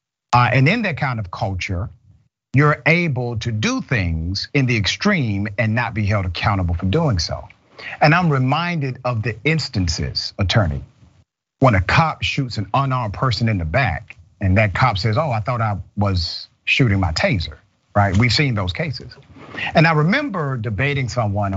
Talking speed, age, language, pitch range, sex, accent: 170 wpm, 40-59, English, 100-140 Hz, male, American